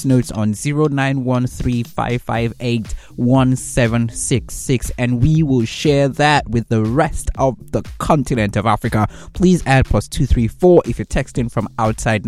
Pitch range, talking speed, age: 110-145 Hz, 125 wpm, 20-39